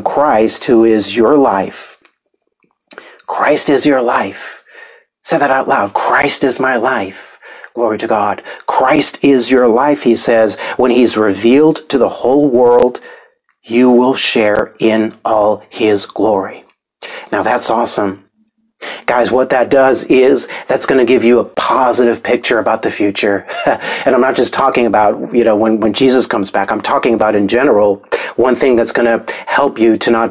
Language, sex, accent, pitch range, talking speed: English, male, American, 110-125 Hz, 170 wpm